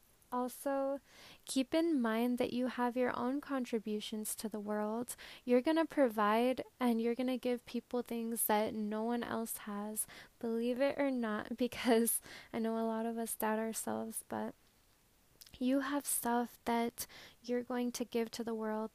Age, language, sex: 10-29, English, female